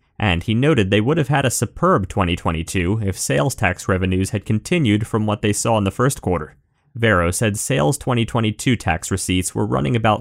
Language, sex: English, male